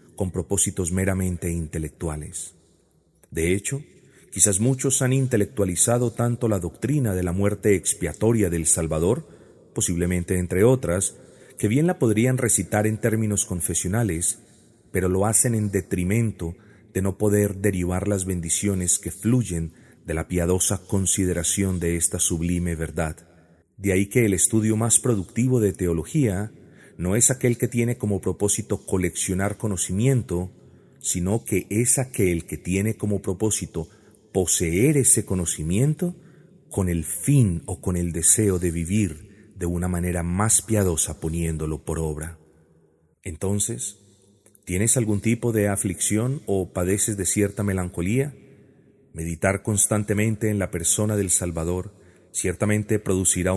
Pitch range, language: 90-110 Hz, English